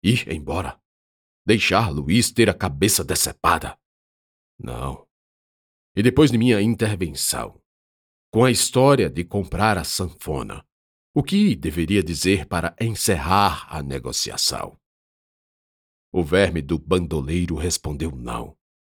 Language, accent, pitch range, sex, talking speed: Portuguese, Brazilian, 70-100 Hz, male, 110 wpm